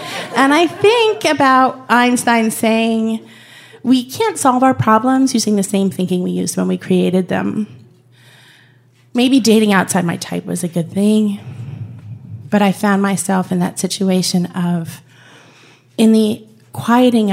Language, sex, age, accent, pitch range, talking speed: English, female, 30-49, American, 155-200 Hz, 140 wpm